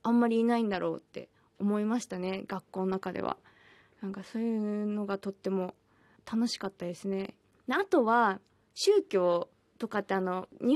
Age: 20-39